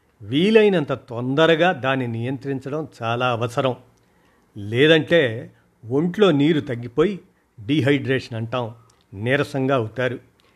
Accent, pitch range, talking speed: native, 120-160 Hz, 80 wpm